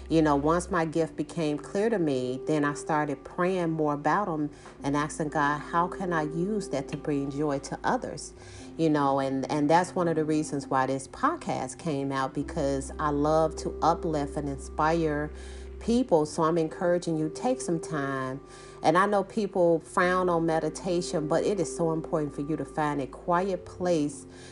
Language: English